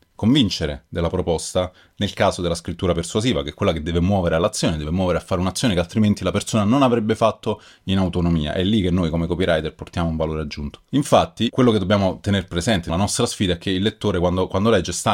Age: 30-49